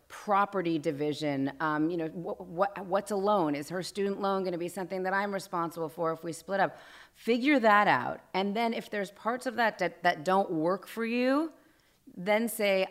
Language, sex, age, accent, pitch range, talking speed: English, female, 30-49, American, 165-220 Hz, 205 wpm